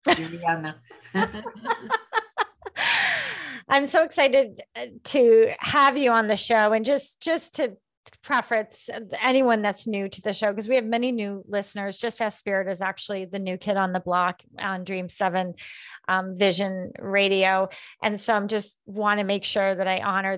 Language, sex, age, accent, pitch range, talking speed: English, female, 30-49, American, 195-245 Hz, 160 wpm